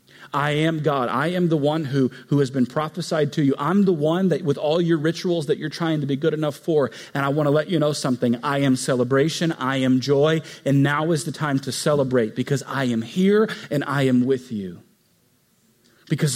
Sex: male